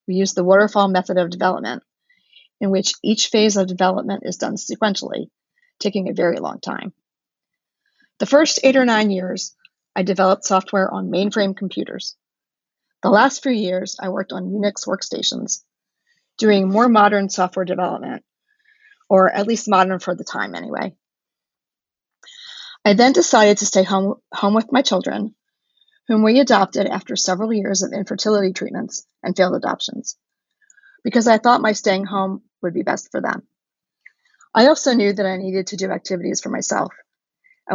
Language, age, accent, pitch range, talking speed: English, 40-59, American, 190-255 Hz, 160 wpm